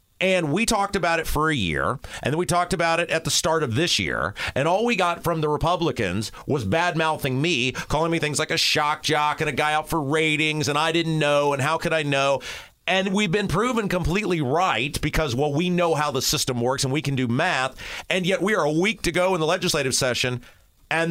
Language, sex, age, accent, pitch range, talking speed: English, male, 40-59, American, 150-205 Hz, 240 wpm